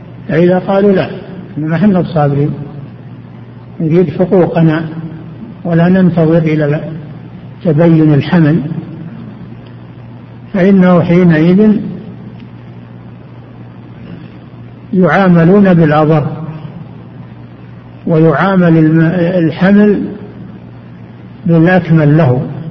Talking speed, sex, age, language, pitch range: 55 wpm, male, 60-79, Arabic, 140-190 Hz